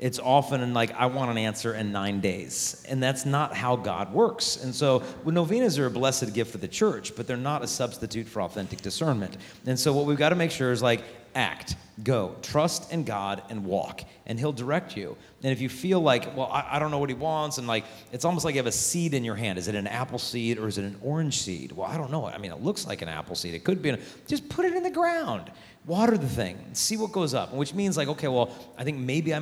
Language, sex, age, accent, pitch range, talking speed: English, male, 40-59, American, 110-150 Hz, 265 wpm